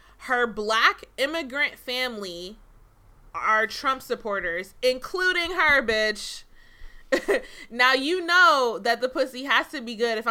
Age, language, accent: 20-39, English, American